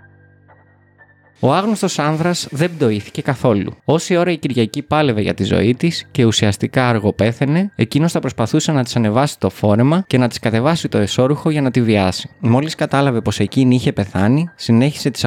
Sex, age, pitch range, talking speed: male, 20-39, 110-155 Hz, 175 wpm